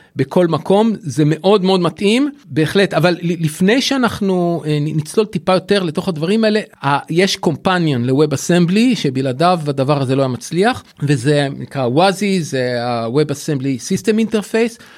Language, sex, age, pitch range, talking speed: Hebrew, male, 40-59, 145-190 Hz, 135 wpm